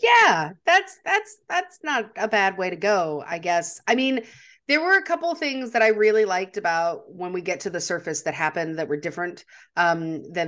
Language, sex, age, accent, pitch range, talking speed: English, female, 30-49, American, 165-215 Hz, 220 wpm